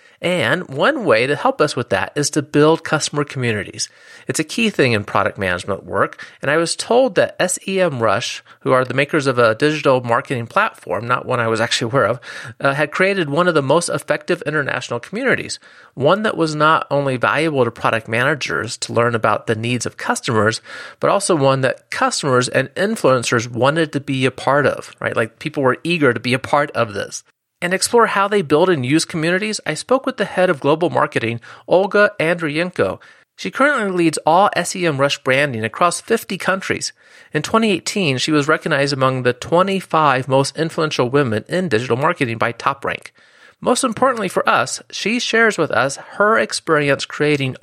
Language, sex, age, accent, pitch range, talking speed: English, male, 30-49, American, 130-185 Hz, 185 wpm